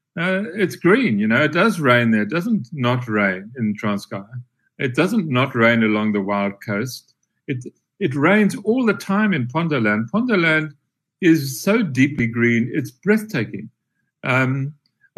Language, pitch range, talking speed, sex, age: English, 120-165 Hz, 155 wpm, male, 60-79